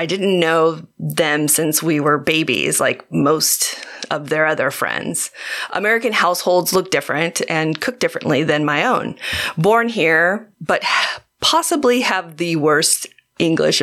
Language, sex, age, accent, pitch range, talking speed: English, female, 30-49, American, 155-230 Hz, 140 wpm